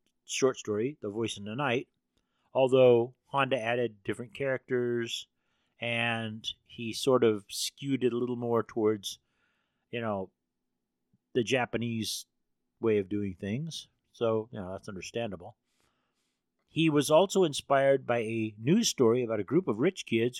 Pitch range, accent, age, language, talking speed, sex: 105-140 Hz, American, 40-59, English, 145 wpm, male